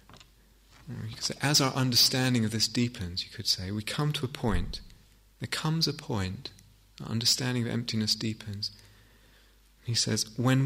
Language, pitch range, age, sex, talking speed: English, 100-125 Hz, 30-49, male, 145 wpm